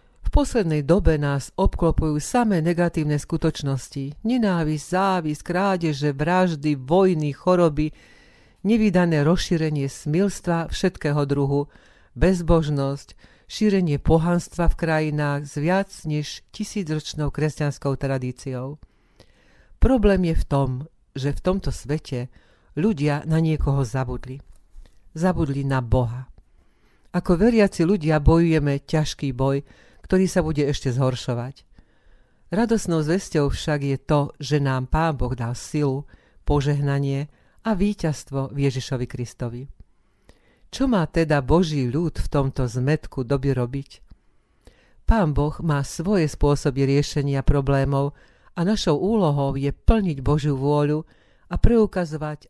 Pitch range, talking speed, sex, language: 135-170 Hz, 110 wpm, female, Slovak